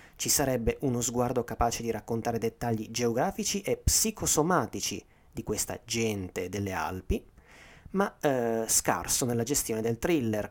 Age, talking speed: 30-49, 130 wpm